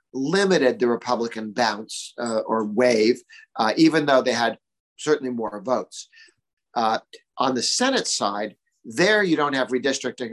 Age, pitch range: 50-69, 110-135 Hz